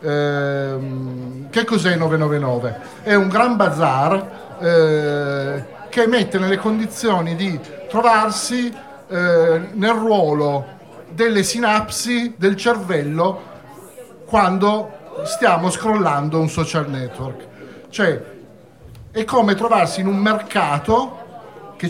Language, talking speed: Italian, 100 wpm